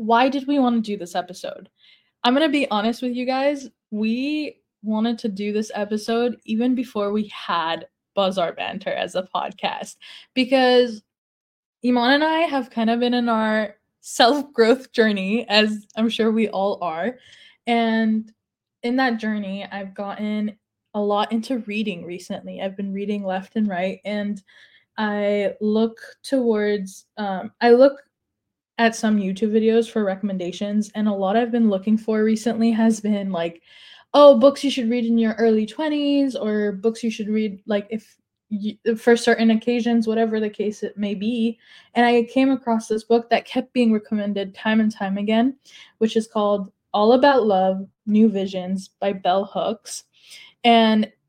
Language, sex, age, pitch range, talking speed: English, female, 10-29, 205-235 Hz, 165 wpm